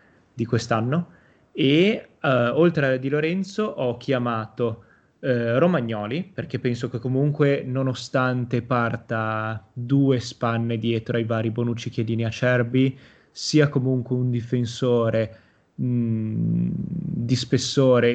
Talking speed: 110 wpm